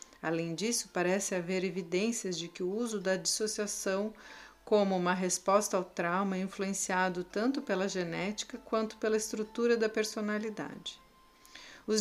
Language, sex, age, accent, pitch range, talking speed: Portuguese, female, 40-59, Brazilian, 190-230 Hz, 135 wpm